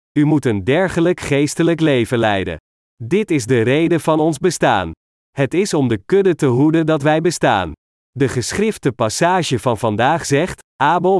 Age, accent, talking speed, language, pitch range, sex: 40-59, Dutch, 165 wpm, Dutch, 125-165 Hz, male